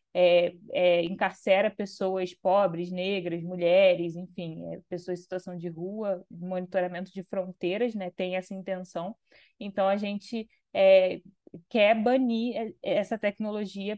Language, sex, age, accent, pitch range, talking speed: Portuguese, female, 20-39, Brazilian, 185-225 Hz, 125 wpm